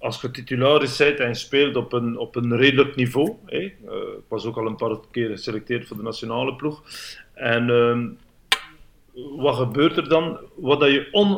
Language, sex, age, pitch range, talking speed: Dutch, male, 50-69, 120-150 Hz, 195 wpm